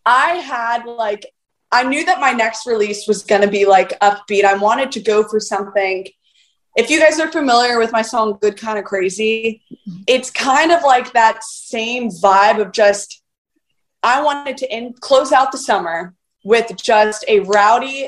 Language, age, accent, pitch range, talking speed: English, 20-39, American, 200-260 Hz, 180 wpm